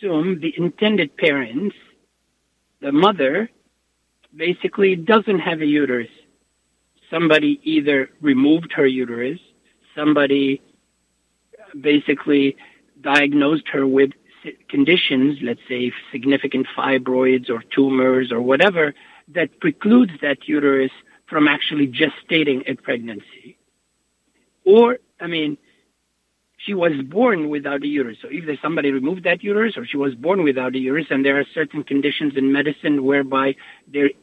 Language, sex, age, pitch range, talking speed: Arabic, male, 60-79, 135-175 Hz, 120 wpm